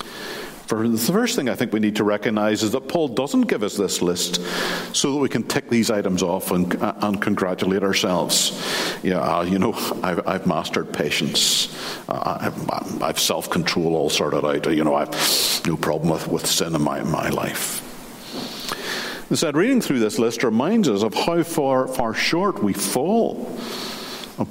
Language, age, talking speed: English, 50-69, 185 wpm